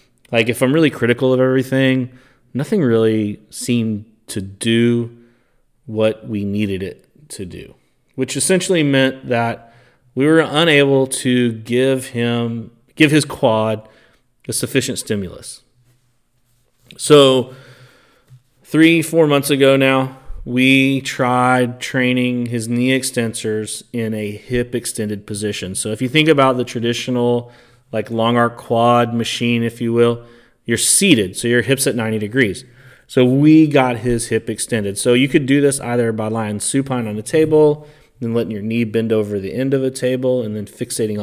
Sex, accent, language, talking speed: male, American, English, 155 wpm